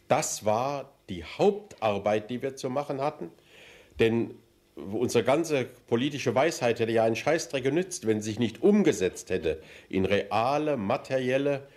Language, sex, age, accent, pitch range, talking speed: German, male, 60-79, German, 110-150 Hz, 145 wpm